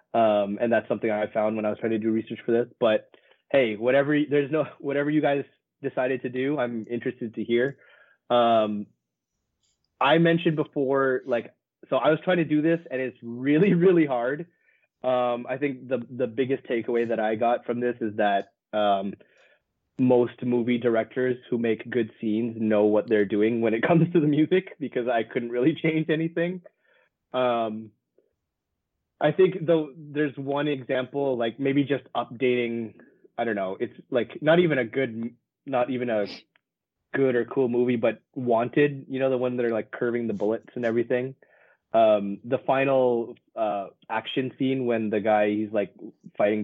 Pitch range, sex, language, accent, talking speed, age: 110-140 Hz, male, English, American, 180 wpm, 20-39